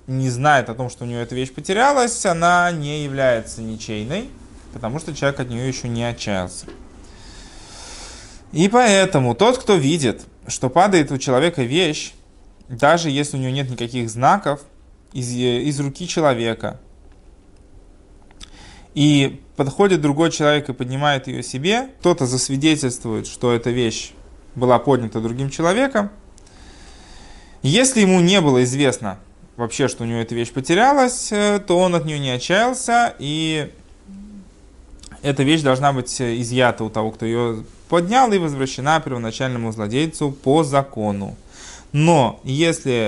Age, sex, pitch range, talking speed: 20-39, male, 120-165 Hz, 135 wpm